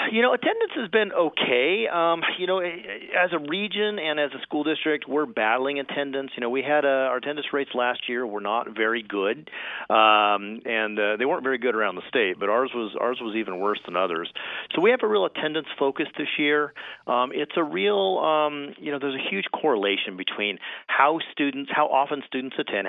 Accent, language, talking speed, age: American, English, 210 wpm, 40-59